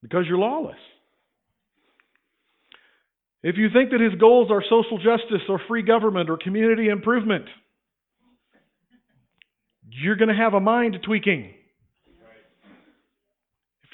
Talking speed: 110 wpm